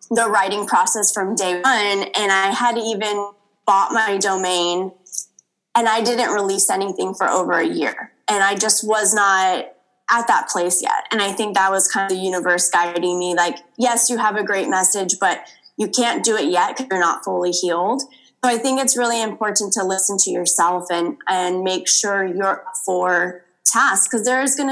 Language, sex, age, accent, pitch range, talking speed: English, female, 20-39, American, 185-220 Hz, 195 wpm